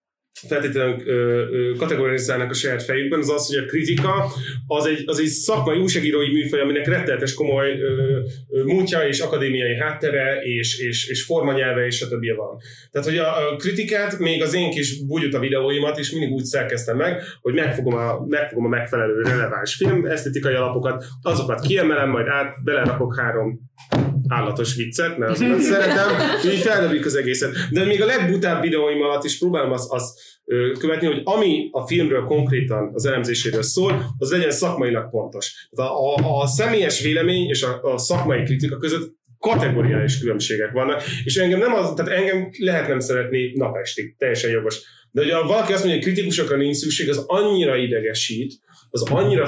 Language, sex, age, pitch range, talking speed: Hungarian, male, 30-49, 125-160 Hz, 160 wpm